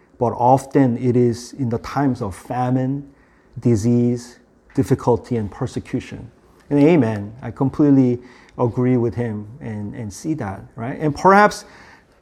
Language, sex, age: English, male, 40-59